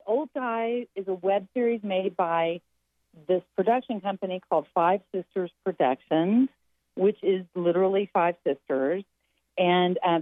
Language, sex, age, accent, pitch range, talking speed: English, female, 40-59, American, 160-200 Hz, 130 wpm